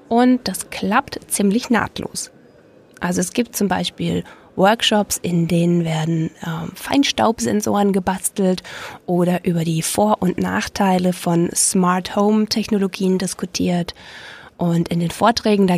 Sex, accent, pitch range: female, German, 175-215 Hz